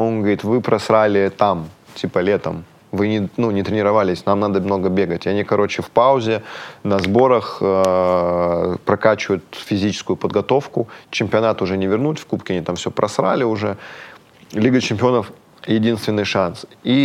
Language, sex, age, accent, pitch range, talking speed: Russian, male, 20-39, native, 100-130 Hz, 150 wpm